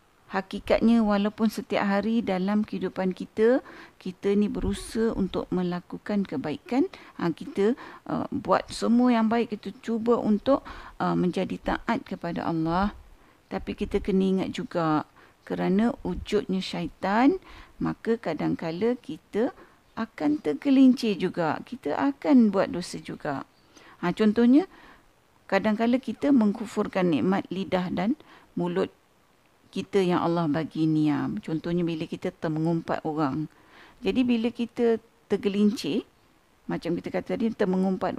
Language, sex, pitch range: Malay, female, 180-235 Hz